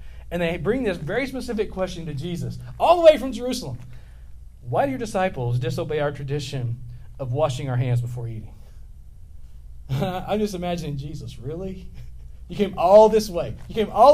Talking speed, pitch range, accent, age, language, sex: 170 wpm, 125-185 Hz, American, 40-59, English, male